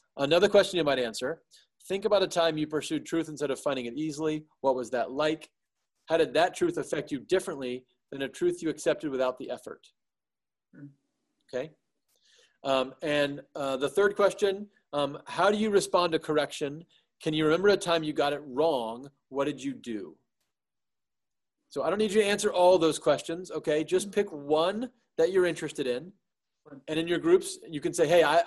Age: 30-49